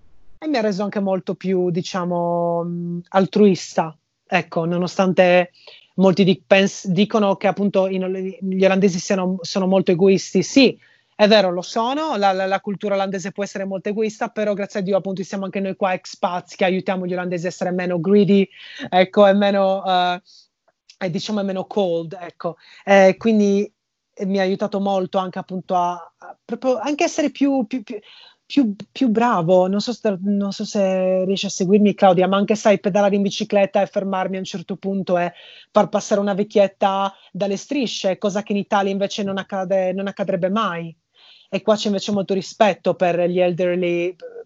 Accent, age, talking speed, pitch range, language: native, 30-49, 175 wpm, 185-205 Hz, Italian